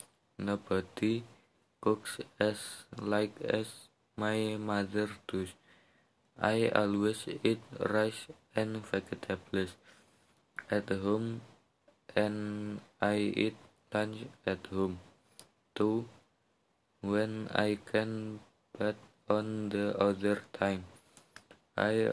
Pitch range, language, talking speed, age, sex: 100-110 Hz, English, 85 wpm, 20-39, male